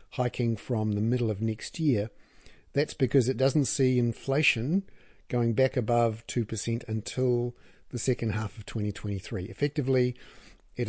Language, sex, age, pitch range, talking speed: English, male, 50-69, 110-130 Hz, 140 wpm